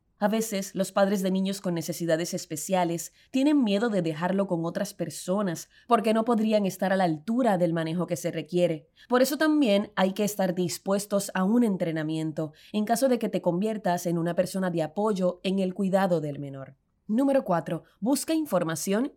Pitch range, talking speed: 170-220 Hz, 180 wpm